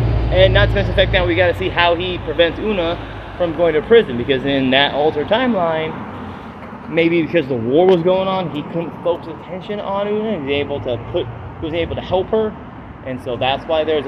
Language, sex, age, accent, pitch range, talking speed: English, male, 30-49, American, 120-175 Hz, 230 wpm